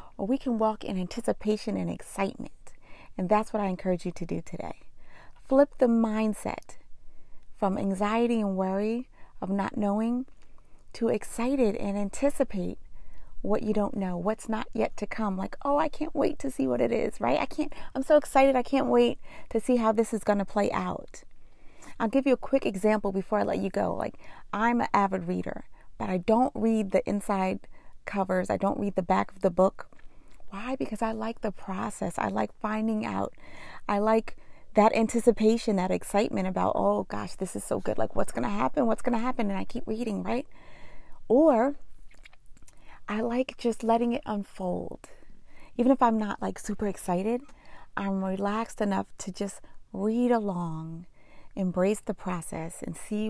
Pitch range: 195-235 Hz